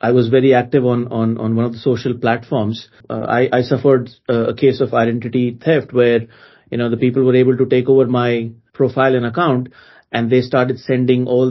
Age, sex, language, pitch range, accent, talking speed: 30-49, male, English, 120-130 Hz, Indian, 210 wpm